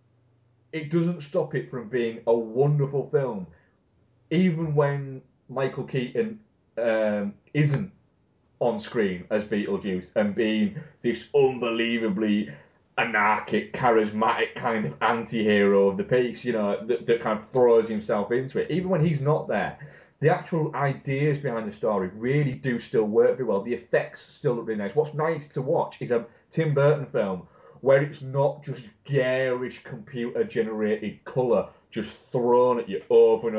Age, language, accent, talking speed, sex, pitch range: 30-49, English, British, 155 wpm, male, 110-145 Hz